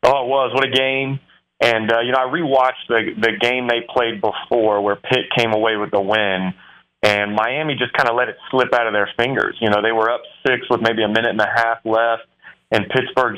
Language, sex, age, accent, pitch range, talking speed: English, male, 30-49, American, 105-120 Hz, 240 wpm